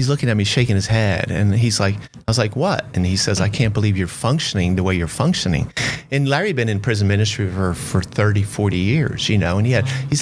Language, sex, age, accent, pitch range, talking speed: English, male, 40-59, American, 100-130 Hz, 260 wpm